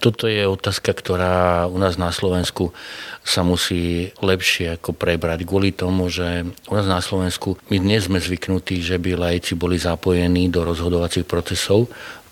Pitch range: 90-100 Hz